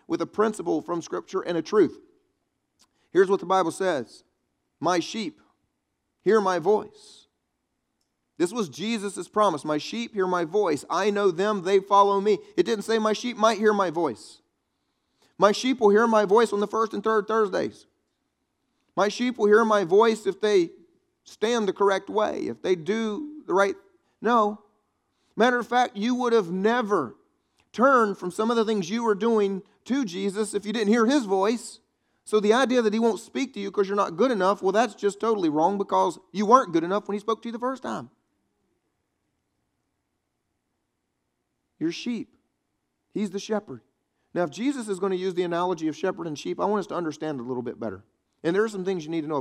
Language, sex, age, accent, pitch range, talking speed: English, male, 40-59, American, 190-240 Hz, 200 wpm